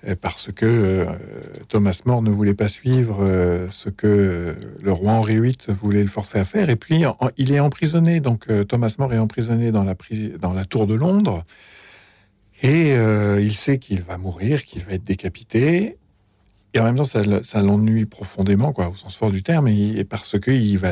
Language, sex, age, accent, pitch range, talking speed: French, male, 50-69, French, 95-120 Hz, 185 wpm